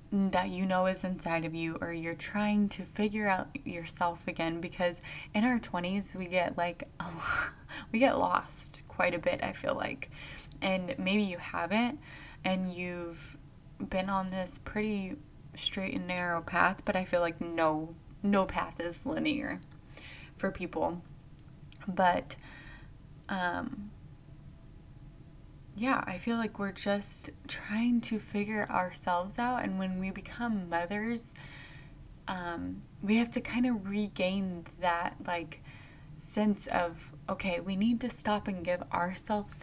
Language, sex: English, female